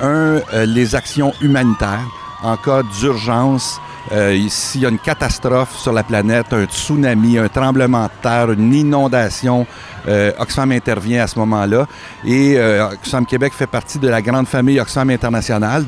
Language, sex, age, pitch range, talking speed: French, male, 60-79, 110-135 Hz, 160 wpm